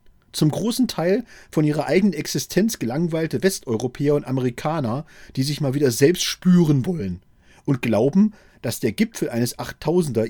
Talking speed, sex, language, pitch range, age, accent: 145 wpm, male, German, 115-180 Hz, 40-59, German